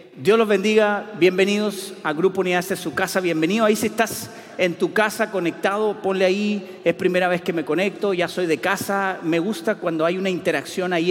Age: 40-59